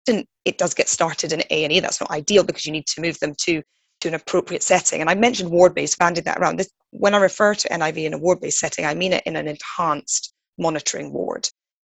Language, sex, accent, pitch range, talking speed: English, female, British, 160-210 Hz, 235 wpm